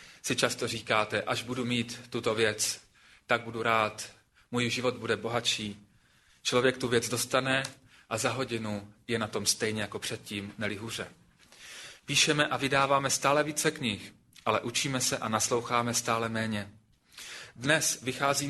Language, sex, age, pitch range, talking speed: Slovak, male, 30-49, 115-135 Hz, 145 wpm